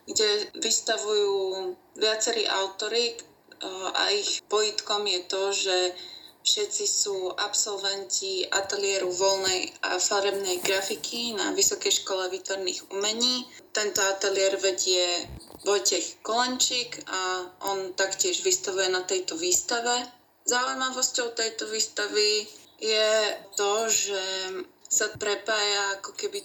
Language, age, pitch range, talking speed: Slovak, 20-39, 195-260 Hz, 100 wpm